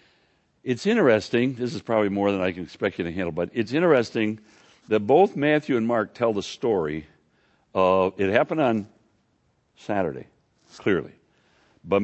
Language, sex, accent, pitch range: English, male, American, 85-115 Hz